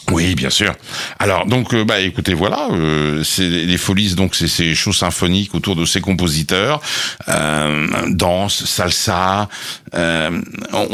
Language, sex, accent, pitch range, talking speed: French, male, French, 90-115 Hz, 145 wpm